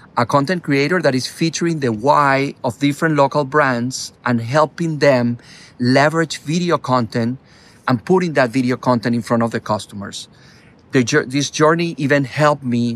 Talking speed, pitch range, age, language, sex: 155 wpm, 120-150 Hz, 40-59, English, male